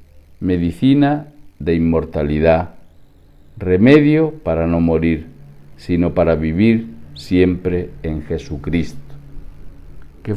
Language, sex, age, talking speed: Spanish, male, 50-69, 80 wpm